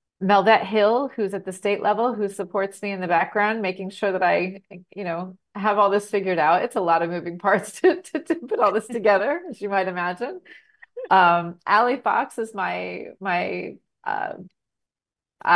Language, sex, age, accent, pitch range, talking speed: English, female, 30-49, American, 175-210 Hz, 185 wpm